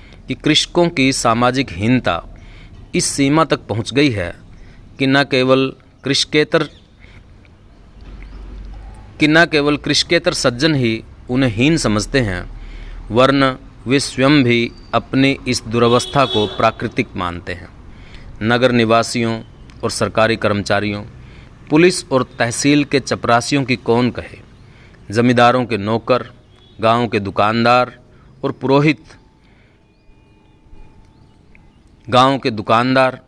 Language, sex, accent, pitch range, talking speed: Hindi, male, native, 105-135 Hz, 105 wpm